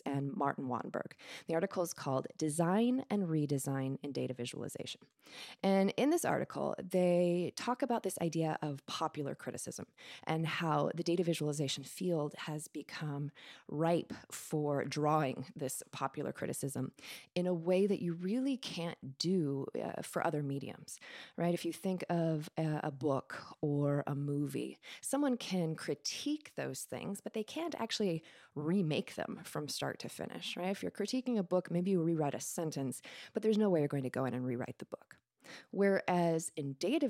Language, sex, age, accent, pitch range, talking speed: English, female, 20-39, American, 150-205 Hz, 170 wpm